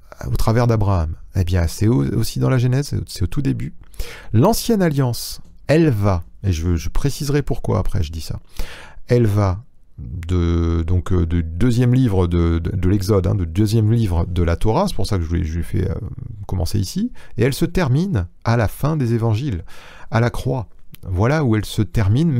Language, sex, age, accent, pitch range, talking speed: French, male, 40-59, French, 90-125 Hz, 200 wpm